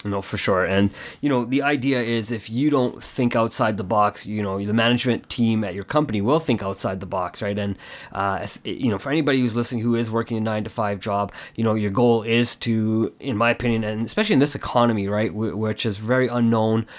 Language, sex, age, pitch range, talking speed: English, male, 20-39, 105-125 Hz, 225 wpm